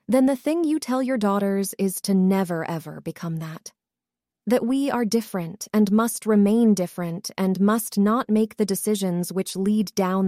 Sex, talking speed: female, 175 wpm